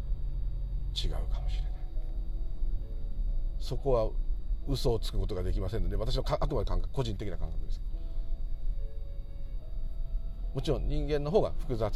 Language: Japanese